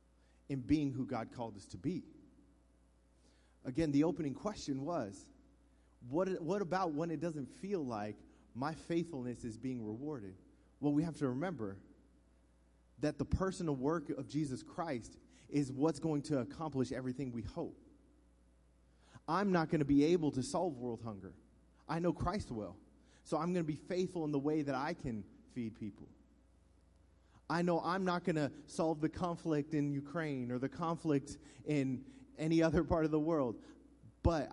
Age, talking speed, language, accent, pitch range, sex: 30-49, 165 wpm, English, American, 110-155 Hz, male